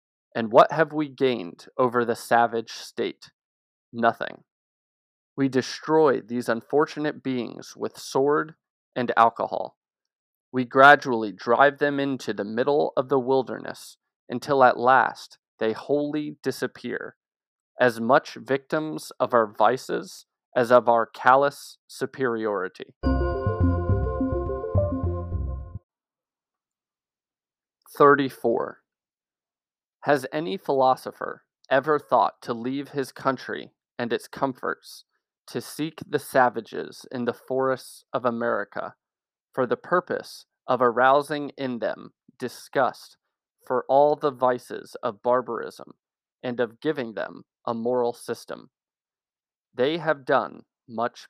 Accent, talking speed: American, 110 wpm